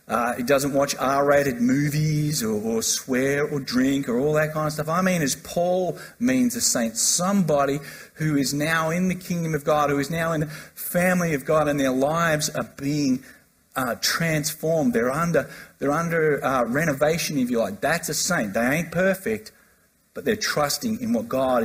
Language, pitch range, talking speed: English, 135-185 Hz, 190 wpm